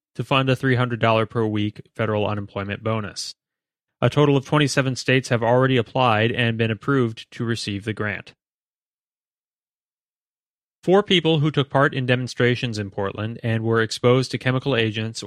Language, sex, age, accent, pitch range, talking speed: English, male, 30-49, American, 110-130 Hz, 155 wpm